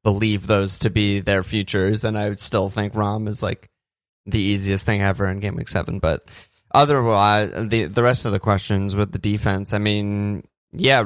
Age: 20-39